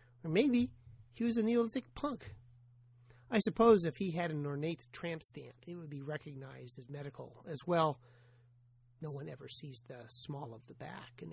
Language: English